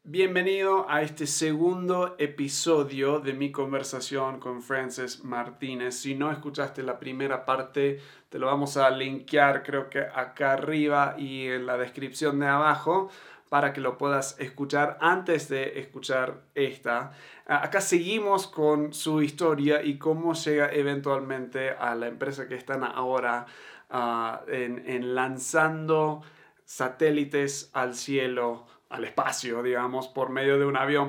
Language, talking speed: Spanish, 135 wpm